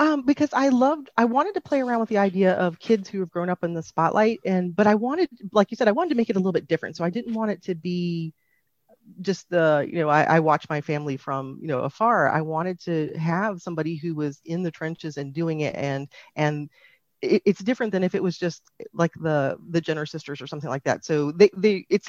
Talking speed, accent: 250 wpm, American